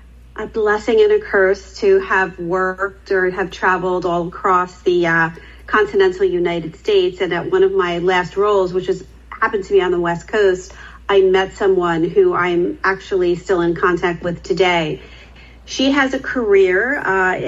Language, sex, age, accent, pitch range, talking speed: English, female, 40-59, American, 180-235 Hz, 170 wpm